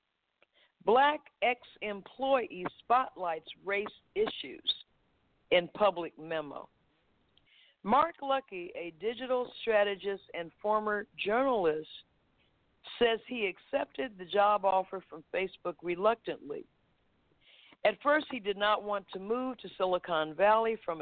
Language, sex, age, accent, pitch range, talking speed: English, female, 50-69, American, 175-245 Hz, 110 wpm